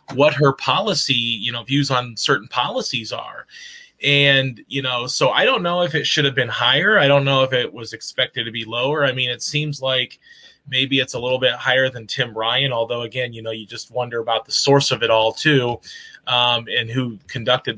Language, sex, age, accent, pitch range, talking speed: English, male, 20-39, American, 120-140 Hz, 220 wpm